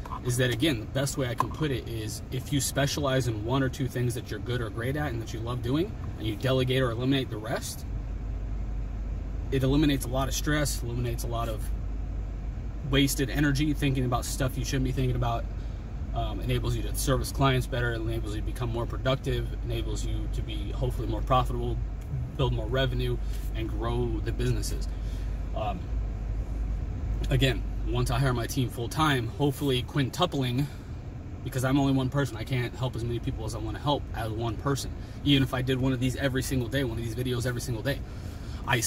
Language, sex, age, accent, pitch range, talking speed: English, male, 30-49, American, 105-130 Hz, 205 wpm